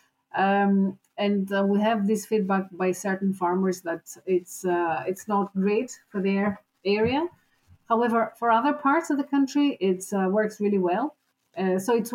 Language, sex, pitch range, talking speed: English, female, 190-230 Hz, 170 wpm